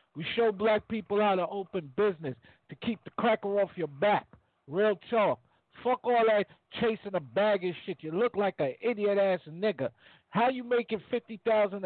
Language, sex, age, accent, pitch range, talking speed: English, male, 50-69, American, 175-225 Hz, 175 wpm